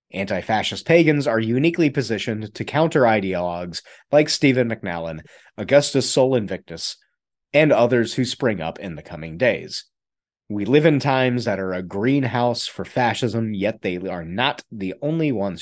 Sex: male